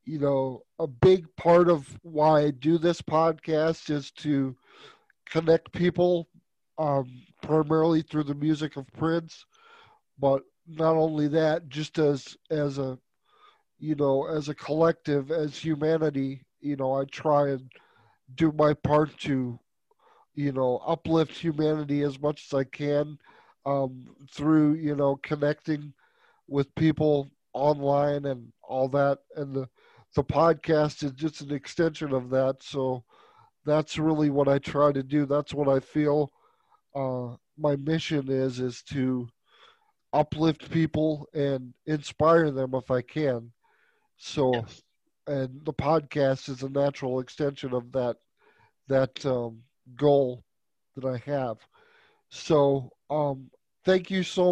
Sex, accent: male, American